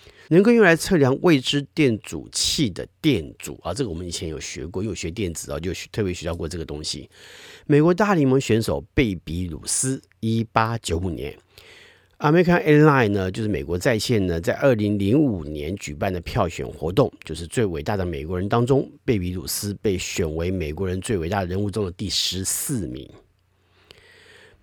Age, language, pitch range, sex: 50-69, Chinese, 90-135 Hz, male